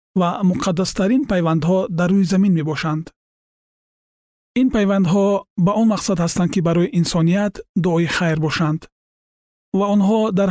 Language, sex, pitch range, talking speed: Persian, male, 165-195 Hz, 145 wpm